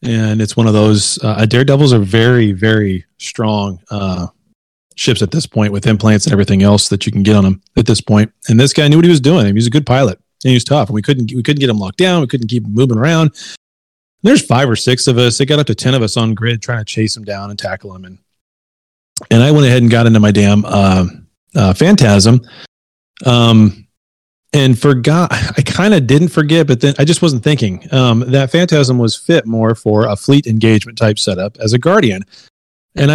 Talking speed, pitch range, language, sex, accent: 230 wpm, 105-145 Hz, English, male, American